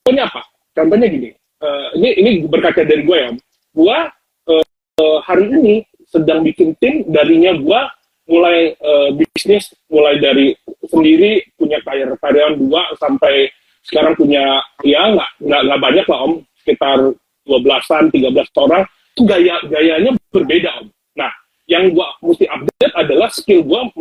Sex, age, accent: male, 30-49, native